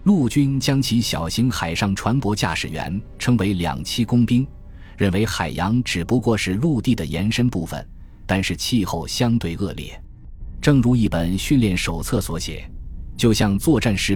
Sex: male